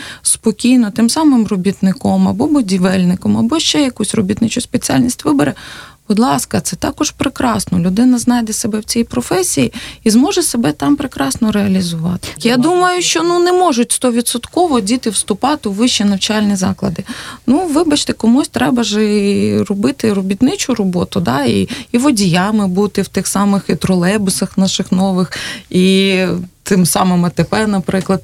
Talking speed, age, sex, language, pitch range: 140 wpm, 20-39, female, Russian, 185-250 Hz